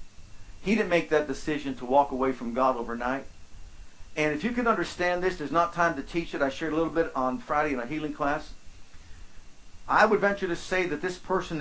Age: 50-69